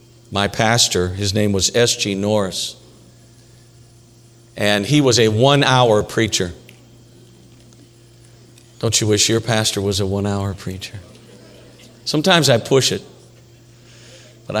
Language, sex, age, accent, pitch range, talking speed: English, male, 50-69, American, 100-120 Hz, 110 wpm